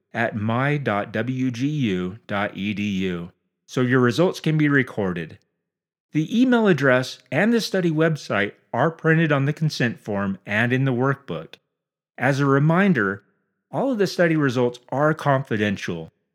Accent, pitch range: American, 110-165 Hz